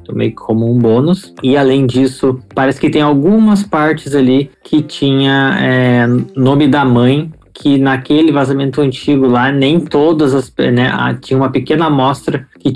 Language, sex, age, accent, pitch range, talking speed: English, male, 20-39, Brazilian, 115-130 Hz, 165 wpm